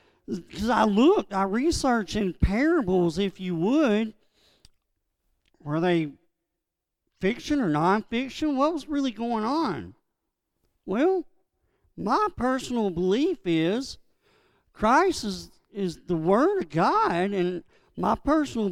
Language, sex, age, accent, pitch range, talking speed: English, male, 50-69, American, 195-280 Hz, 110 wpm